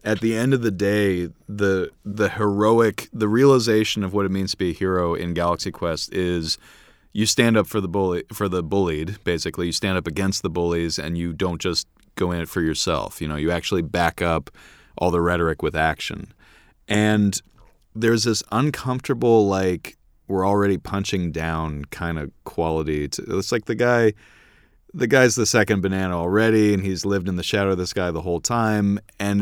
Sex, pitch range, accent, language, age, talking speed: male, 90-110 Hz, American, English, 30-49, 195 wpm